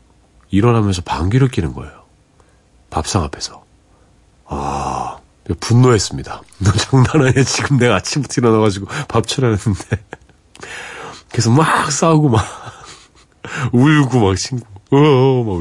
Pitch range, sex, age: 95-130 Hz, male, 40-59